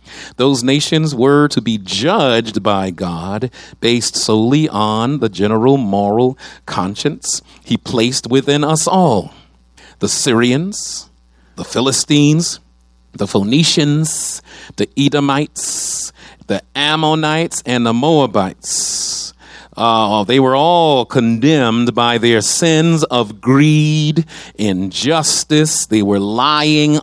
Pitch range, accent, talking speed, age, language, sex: 115-155 Hz, American, 105 wpm, 40-59, English, male